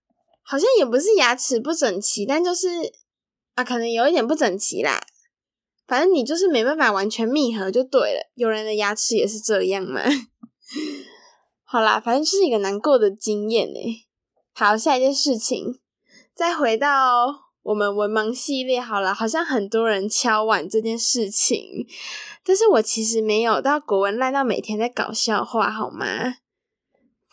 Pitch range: 220-315 Hz